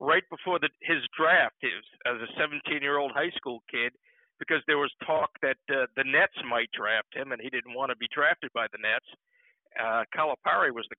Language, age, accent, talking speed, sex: English, 50-69, American, 190 wpm, male